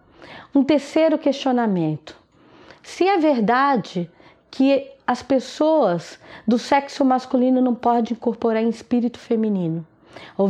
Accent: Brazilian